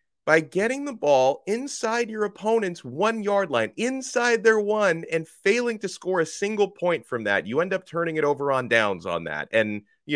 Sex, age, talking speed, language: male, 30-49, 195 wpm, English